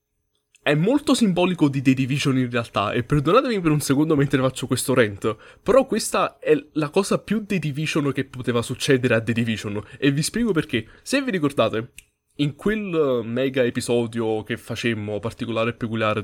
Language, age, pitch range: Italian, 20-39, 125-175 Hz